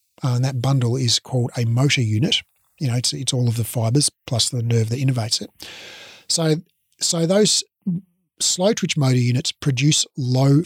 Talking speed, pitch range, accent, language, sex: 175 wpm, 125-165 Hz, Australian, English, male